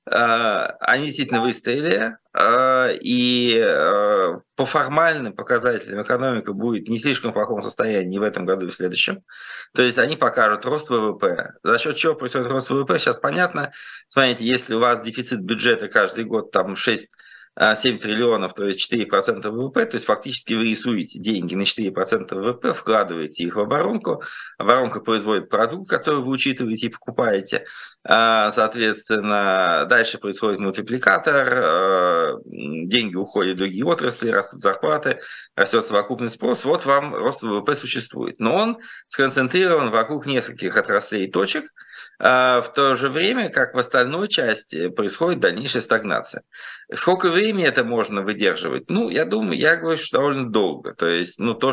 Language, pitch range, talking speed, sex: Russian, 105-140 Hz, 145 wpm, male